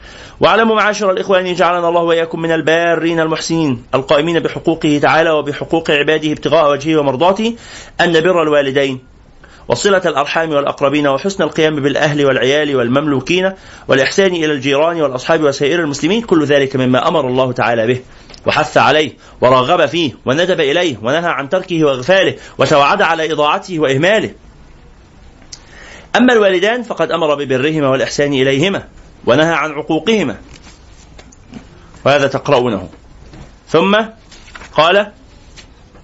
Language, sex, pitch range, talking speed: Arabic, male, 135-170 Hz, 115 wpm